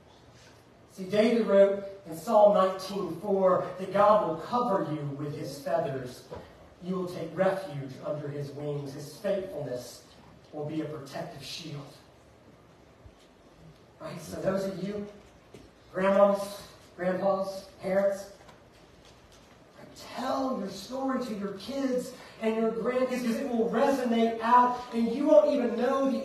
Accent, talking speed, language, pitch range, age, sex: American, 130 wpm, English, 195-270 Hz, 40-59, male